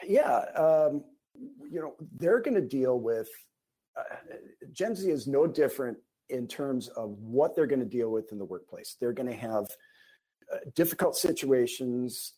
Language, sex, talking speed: English, male, 165 wpm